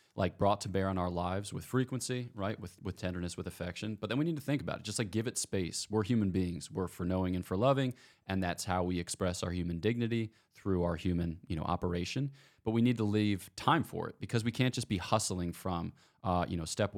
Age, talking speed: 20-39, 245 wpm